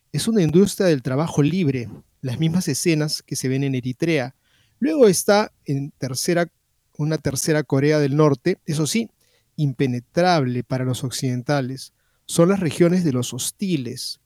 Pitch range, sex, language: 135-160 Hz, male, Spanish